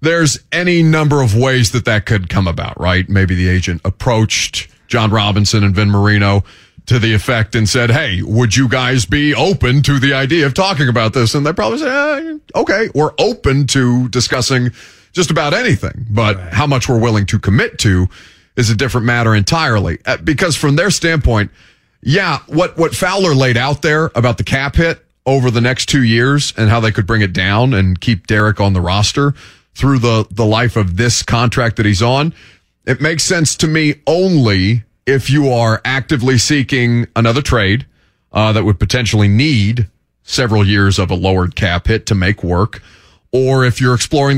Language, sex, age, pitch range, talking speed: English, male, 30-49, 105-135 Hz, 190 wpm